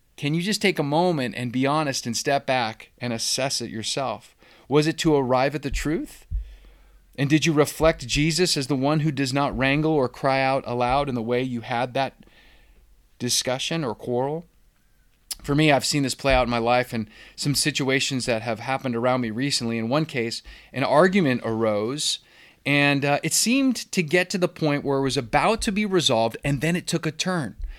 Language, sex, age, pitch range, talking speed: English, male, 30-49, 120-155 Hz, 205 wpm